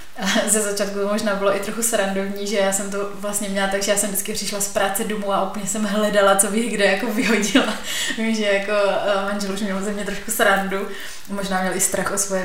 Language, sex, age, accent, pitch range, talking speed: Czech, female, 20-39, native, 195-215 Hz, 225 wpm